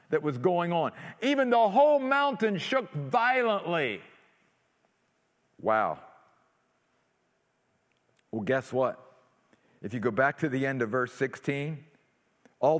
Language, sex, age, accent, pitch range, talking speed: English, male, 50-69, American, 125-180 Hz, 115 wpm